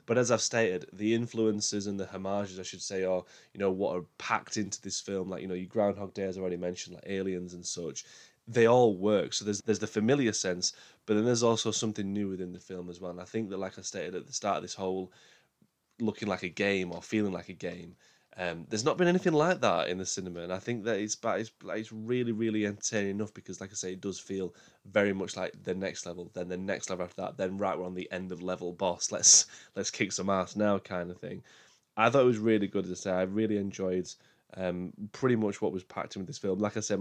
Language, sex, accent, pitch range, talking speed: English, male, British, 90-110 Hz, 260 wpm